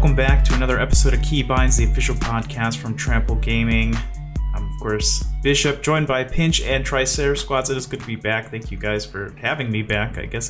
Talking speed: 210 wpm